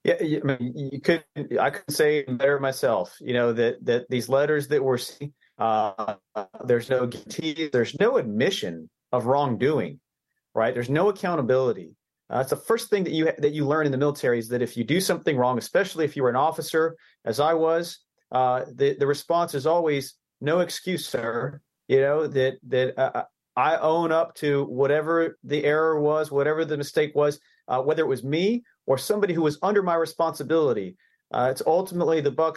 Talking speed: 190 wpm